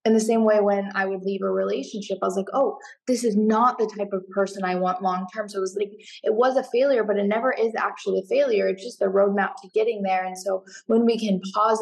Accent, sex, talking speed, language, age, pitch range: American, female, 265 wpm, English, 10-29, 195-215 Hz